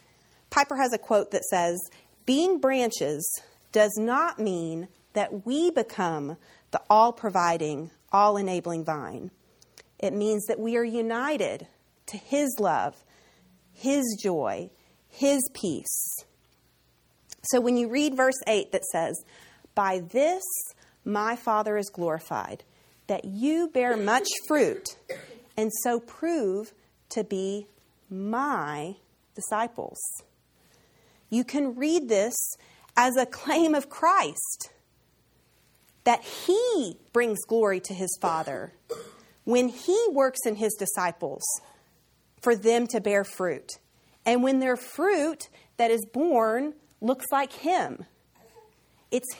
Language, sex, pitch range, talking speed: English, female, 200-280 Hz, 120 wpm